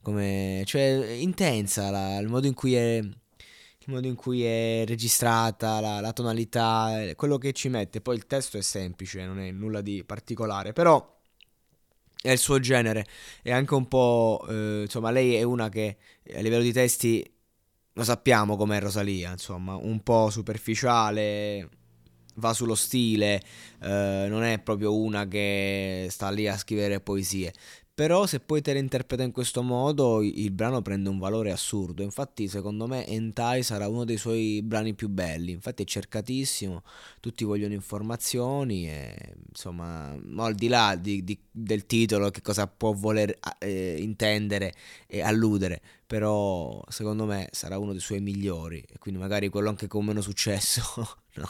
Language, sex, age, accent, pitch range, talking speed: Italian, male, 20-39, native, 100-115 Hz, 160 wpm